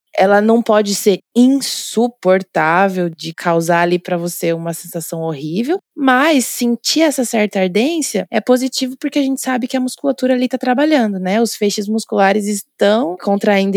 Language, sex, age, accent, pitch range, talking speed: Portuguese, female, 20-39, Brazilian, 185-250 Hz, 155 wpm